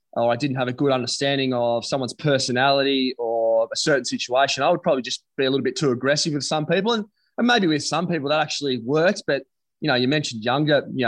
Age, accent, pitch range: 20-39, Australian, 125-150 Hz